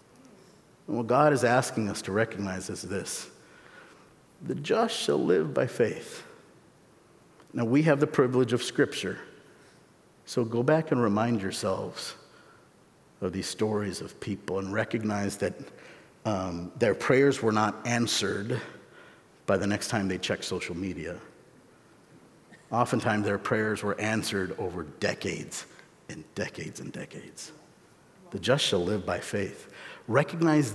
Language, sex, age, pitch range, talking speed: English, male, 50-69, 110-175 Hz, 135 wpm